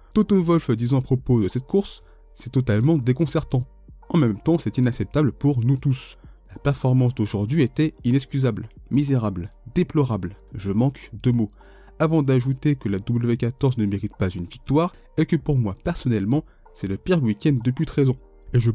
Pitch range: 110-150 Hz